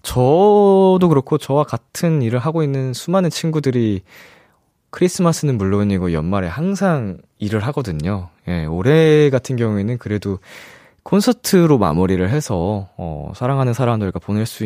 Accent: native